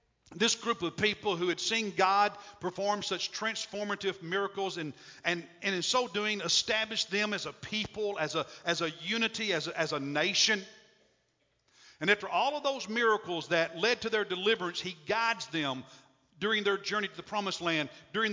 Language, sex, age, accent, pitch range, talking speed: English, male, 50-69, American, 170-220 Hz, 180 wpm